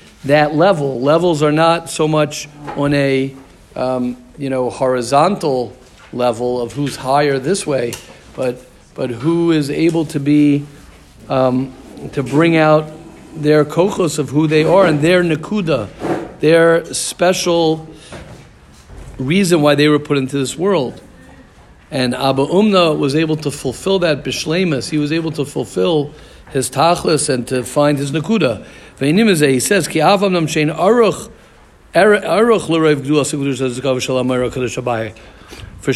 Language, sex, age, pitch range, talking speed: English, male, 50-69, 135-170 Hz, 120 wpm